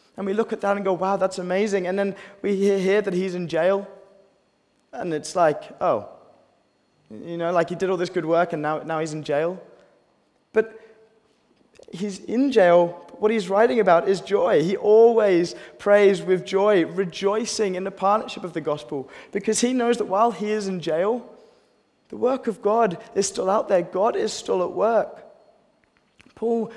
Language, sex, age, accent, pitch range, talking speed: English, male, 20-39, British, 160-210 Hz, 185 wpm